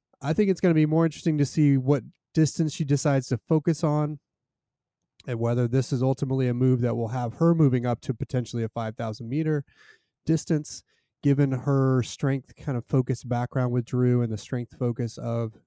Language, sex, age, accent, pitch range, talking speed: English, male, 30-49, American, 115-145 Hz, 190 wpm